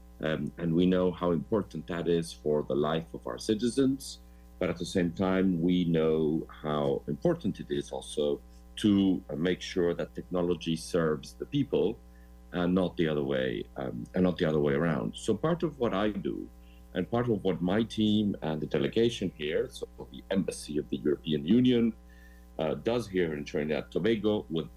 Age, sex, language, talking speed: 50-69, male, English, 185 wpm